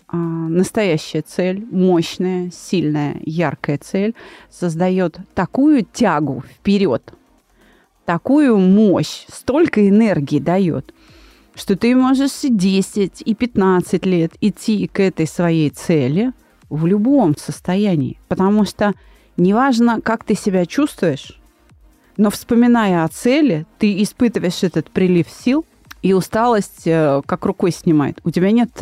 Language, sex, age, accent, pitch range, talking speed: Russian, female, 30-49, native, 160-215 Hz, 115 wpm